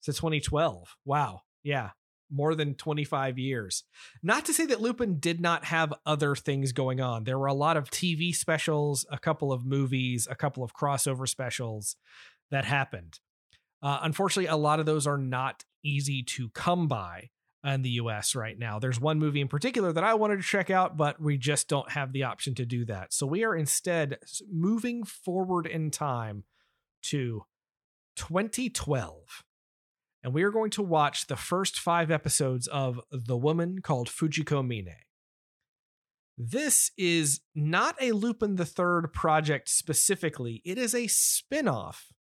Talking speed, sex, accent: 165 wpm, male, American